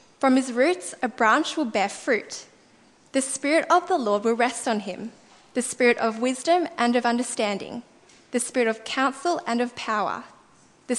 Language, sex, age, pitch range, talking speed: English, female, 10-29, 225-285 Hz, 175 wpm